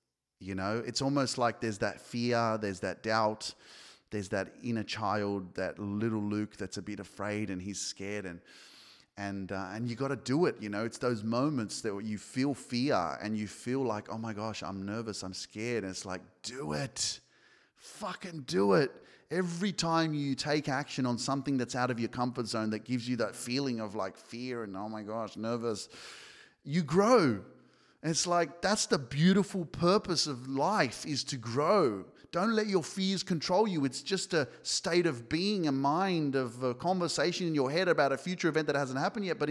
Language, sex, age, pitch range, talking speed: English, male, 30-49, 110-145 Hz, 195 wpm